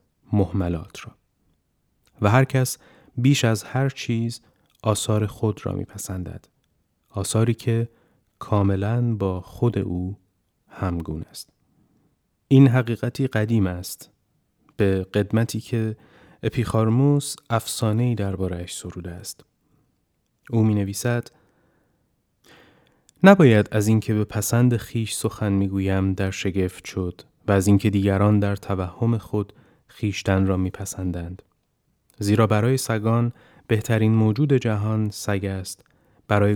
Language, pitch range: Persian, 100-115 Hz